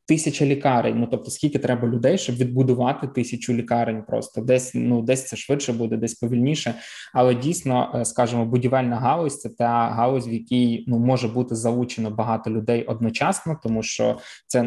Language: Ukrainian